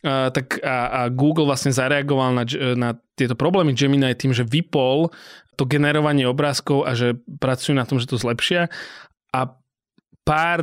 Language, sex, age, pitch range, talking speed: Slovak, male, 20-39, 130-155 Hz, 160 wpm